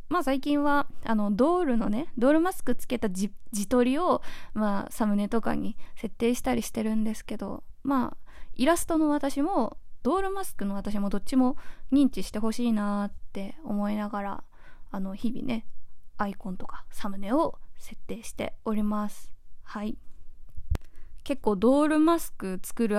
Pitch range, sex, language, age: 205-255 Hz, female, Japanese, 20-39